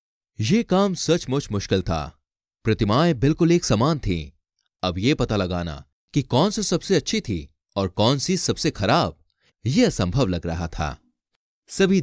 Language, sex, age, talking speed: Hindi, male, 30-49, 155 wpm